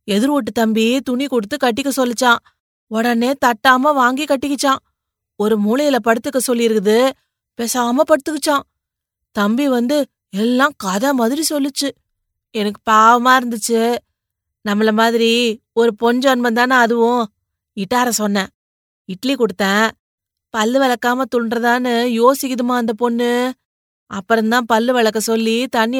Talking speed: 110 wpm